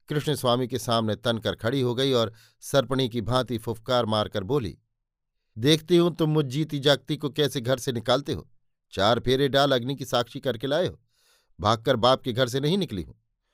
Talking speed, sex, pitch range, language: 195 wpm, male, 120-150 Hz, Hindi